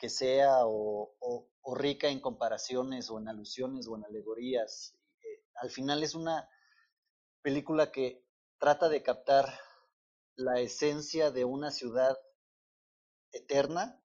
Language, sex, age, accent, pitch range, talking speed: Spanish, male, 30-49, Mexican, 130-165 Hz, 125 wpm